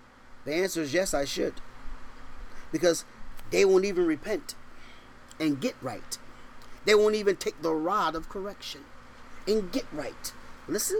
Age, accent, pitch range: 40-59, American, 175-265 Hz